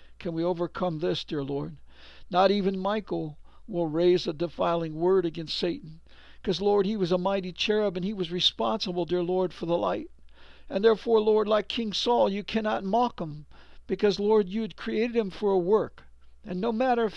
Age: 60-79